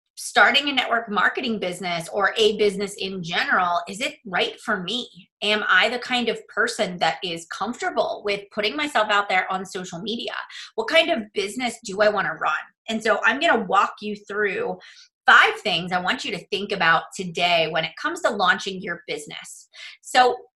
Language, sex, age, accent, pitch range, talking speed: English, female, 30-49, American, 185-230 Hz, 190 wpm